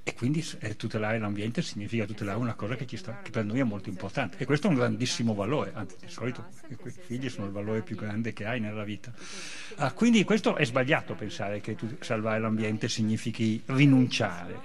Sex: male